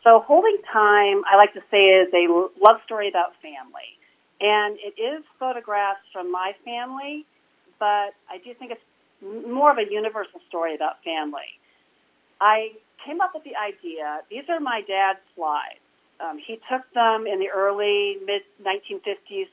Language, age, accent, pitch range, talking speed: English, 40-59, American, 180-235 Hz, 155 wpm